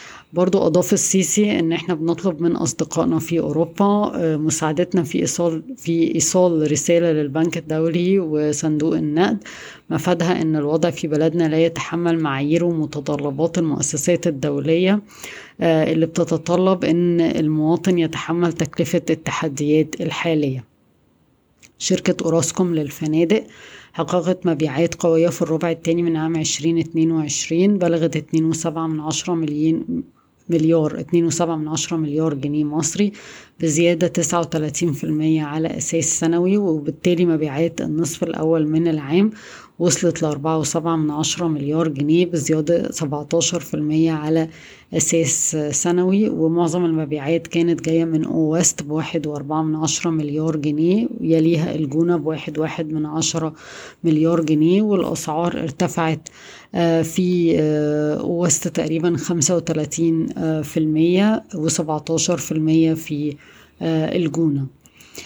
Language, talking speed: Arabic, 110 wpm